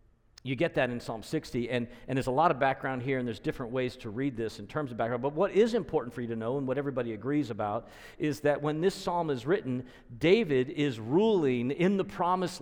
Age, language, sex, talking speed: 50-69, English, male, 245 wpm